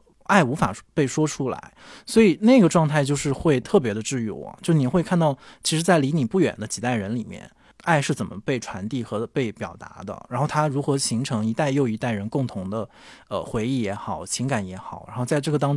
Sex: male